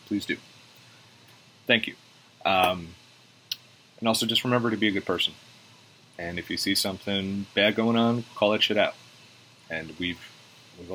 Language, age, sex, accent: English, 30-49, male, American